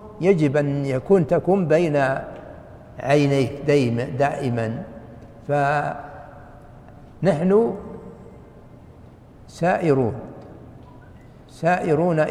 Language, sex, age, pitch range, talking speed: Arabic, male, 60-79, 125-160 Hz, 50 wpm